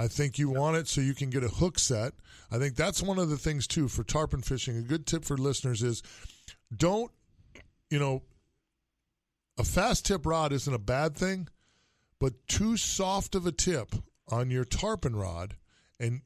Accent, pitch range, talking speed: American, 115-150 Hz, 190 wpm